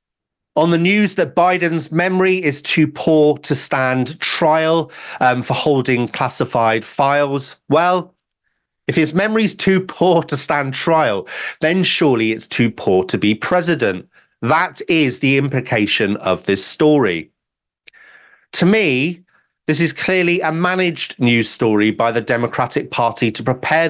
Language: English